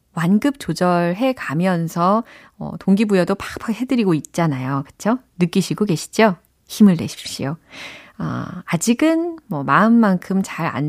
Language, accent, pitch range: Korean, native, 165-230 Hz